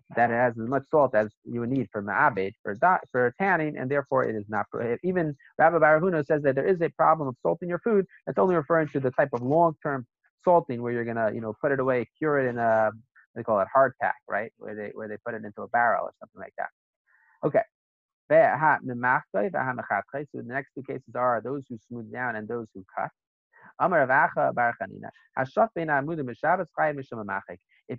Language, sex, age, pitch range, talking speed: English, male, 30-49, 120-155 Hz, 195 wpm